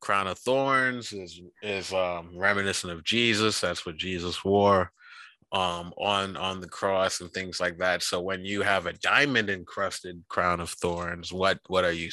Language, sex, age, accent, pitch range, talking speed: English, male, 20-39, American, 90-100 Hz, 180 wpm